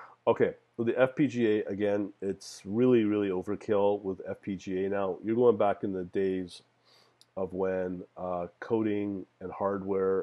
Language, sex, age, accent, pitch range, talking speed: English, male, 40-59, American, 95-110 Hz, 140 wpm